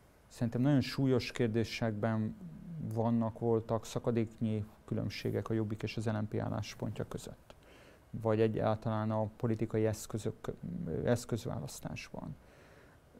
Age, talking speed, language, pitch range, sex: 30-49, 90 wpm, Hungarian, 110-130 Hz, male